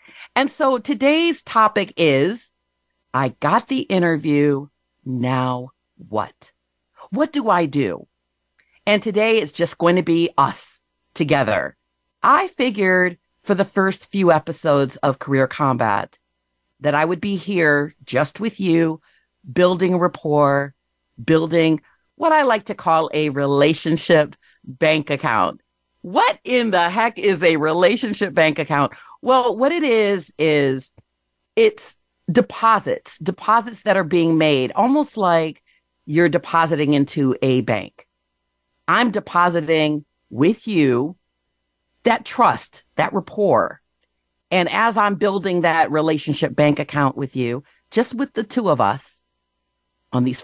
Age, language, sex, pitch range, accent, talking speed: 50-69, English, female, 135-200 Hz, American, 130 wpm